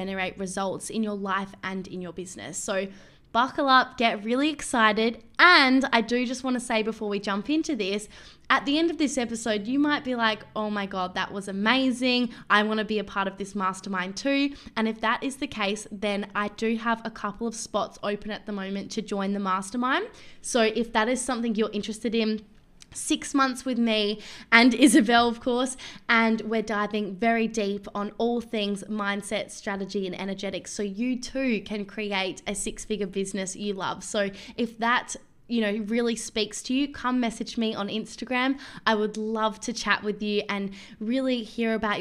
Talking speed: 200 wpm